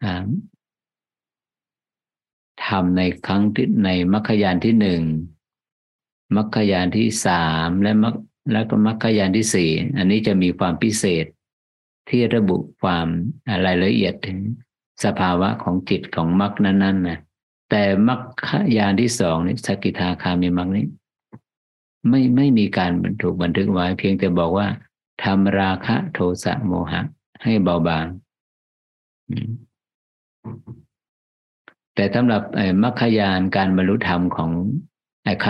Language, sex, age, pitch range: Thai, male, 50-69, 85-110 Hz